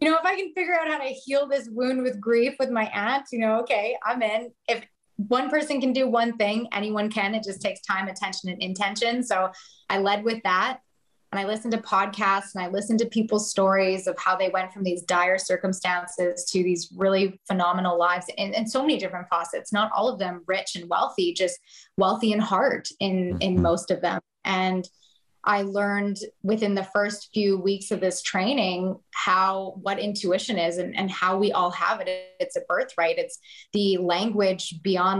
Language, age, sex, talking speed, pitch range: English, 20-39, female, 205 wpm, 190-235 Hz